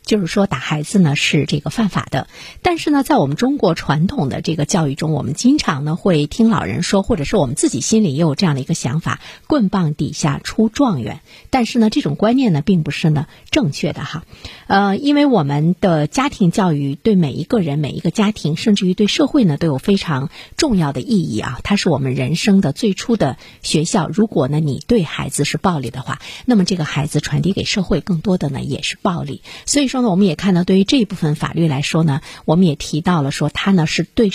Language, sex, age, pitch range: Chinese, female, 50-69, 150-210 Hz